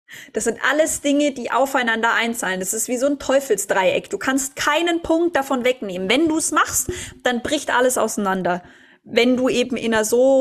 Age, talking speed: 20-39, 190 wpm